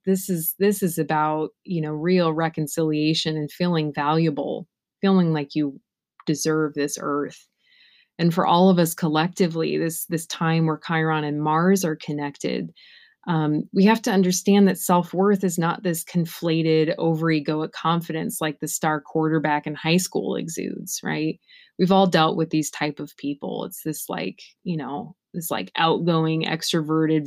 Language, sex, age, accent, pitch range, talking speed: English, female, 20-39, American, 155-175 Hz, 160 wpm